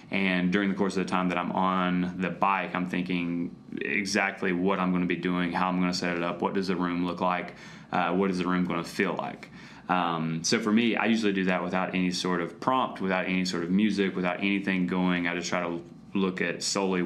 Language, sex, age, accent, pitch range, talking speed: English, male, 20-39, American, 85-95 Hz, 250 wpm